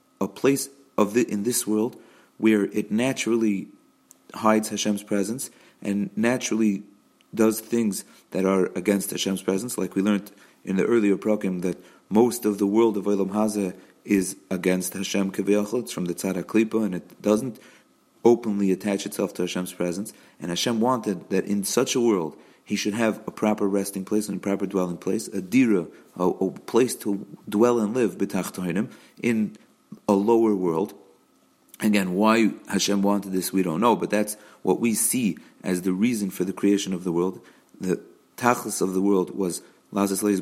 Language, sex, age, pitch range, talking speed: English, male, 40-59, 95-110 Hz, 170 wpm